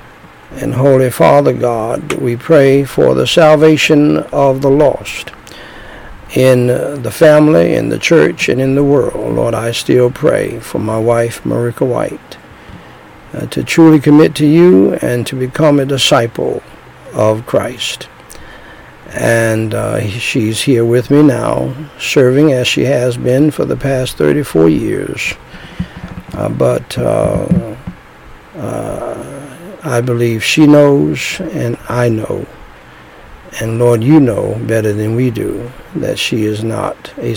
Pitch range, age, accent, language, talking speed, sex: 120-145 Hz, 60-79, American, English, 135 wpm, male